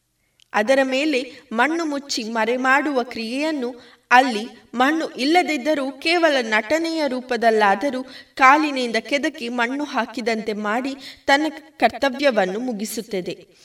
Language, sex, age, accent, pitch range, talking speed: Kannada, female, 20-39, native, 215-285 Hz, 90 wpm